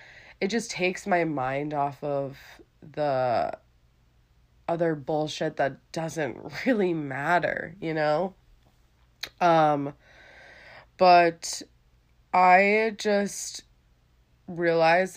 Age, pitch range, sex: 20-39, 140-175 Hz, female